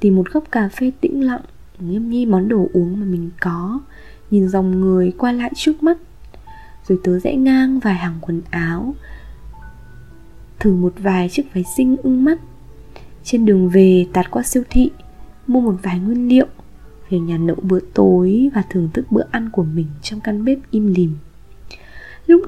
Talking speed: 180 wpm